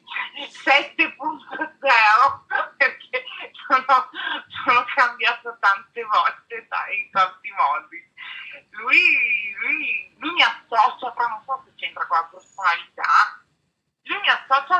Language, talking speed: Italian, 110 wpm